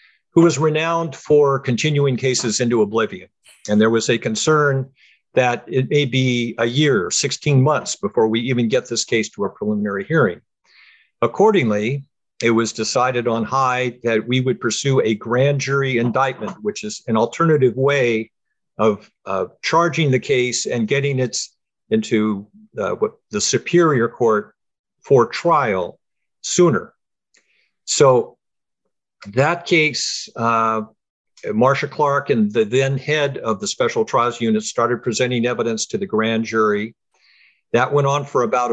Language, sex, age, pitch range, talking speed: English, male, 50-69, 115-150 Hz, 145 wpm